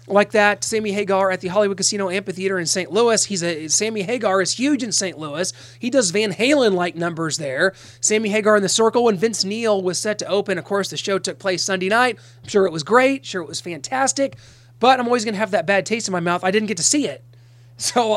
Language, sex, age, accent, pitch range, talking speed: English, male, 30-49, American, 170-215 Hz, 250 wpm